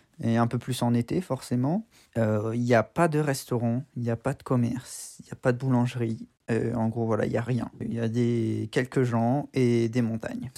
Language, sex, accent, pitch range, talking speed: French, male, French, 120-140 Hz, 245 wpm